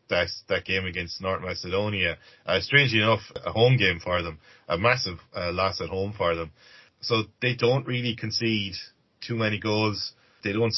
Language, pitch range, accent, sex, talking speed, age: English, 95-115 Hz, Irish, male, 175 wpm, 20-39